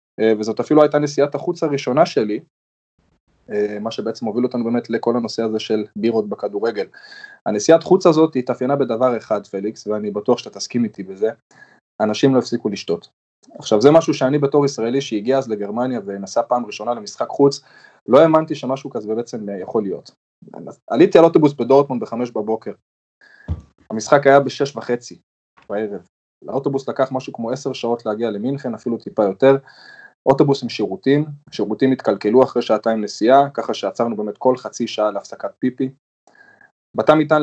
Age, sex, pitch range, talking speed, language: 20-39, male, 110-140 Hz, 145 wpm, Hebrew